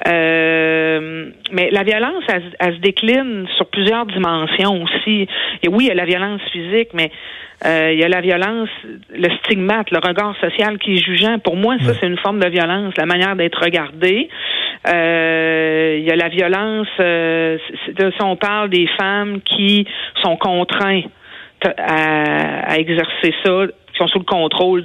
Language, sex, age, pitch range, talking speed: French, female, 50-69, 160-200 Hz, 165 wpm